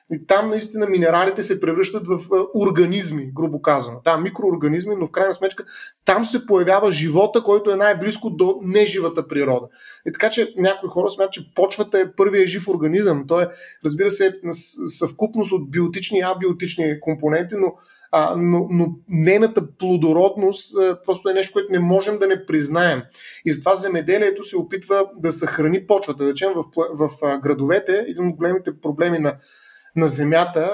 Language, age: Bulgarian, 30-49